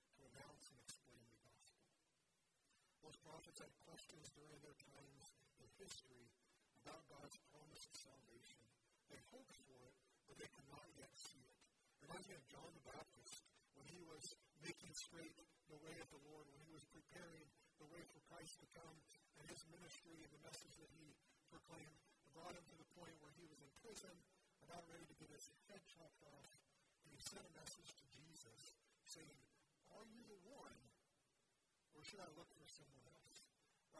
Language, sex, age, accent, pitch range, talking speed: English, female, 40-59, American, 135-165 Hz, 175 wpm